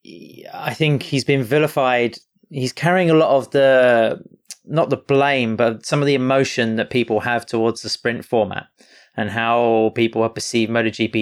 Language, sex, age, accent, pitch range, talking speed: English, male, 30-49, British, 110-130 Hz, 170 wpm